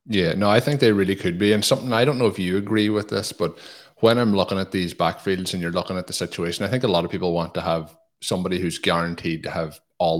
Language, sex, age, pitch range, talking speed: English, male, 30-49, 85-100 Hz, 270 wpm